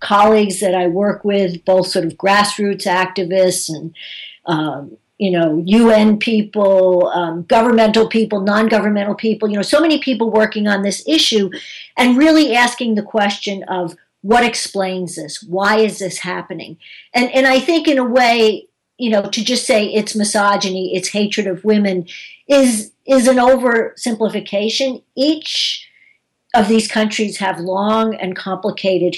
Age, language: 50-69, English